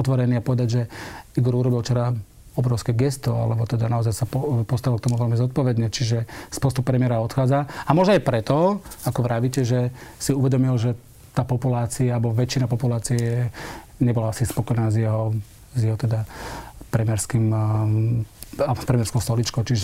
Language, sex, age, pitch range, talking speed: Slovak, male, 40-59, 115-130 Hz, 145 wpm